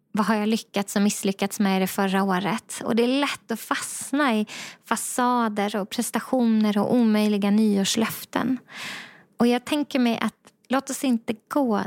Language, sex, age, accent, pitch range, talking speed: Swedish, female, 20-39, native, 200-240 Hz, 160 wpm